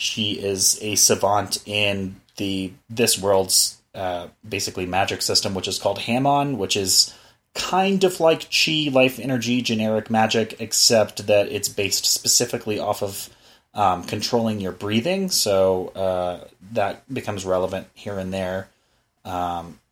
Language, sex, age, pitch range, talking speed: English, male, 30-49, 100-130 Hz, 140 wpm